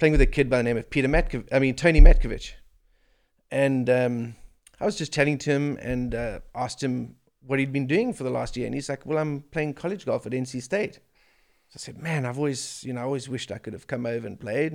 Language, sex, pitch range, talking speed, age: English, male, 120-145 Hz, 255 wpm, 30-49